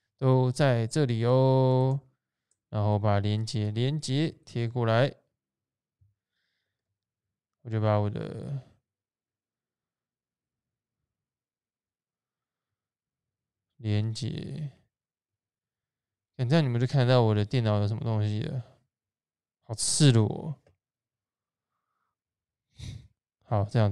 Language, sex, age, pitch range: Chinese, male, 20-39, 110-140 Hz